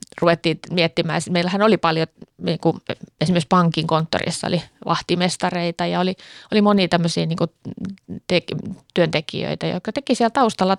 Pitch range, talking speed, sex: 170-195 Hz, 135 wpm, female